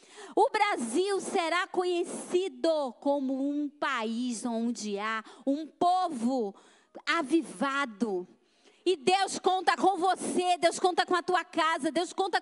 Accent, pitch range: Brazilian, 280-375 Hz